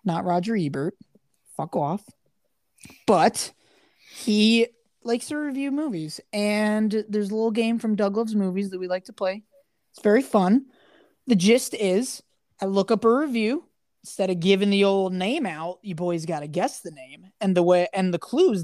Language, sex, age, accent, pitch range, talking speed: English, male, 20-39, American, 180-230 Hz, 175 wpm